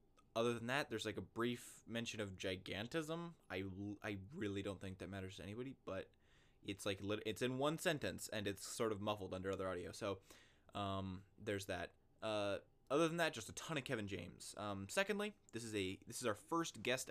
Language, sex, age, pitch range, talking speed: English, male, 20-39, 95-125 Hz, 205 wpm